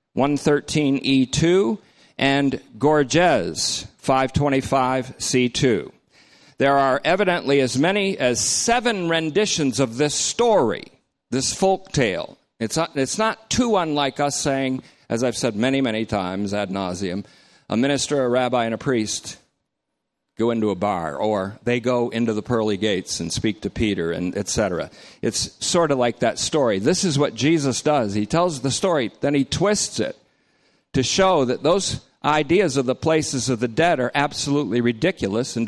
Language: English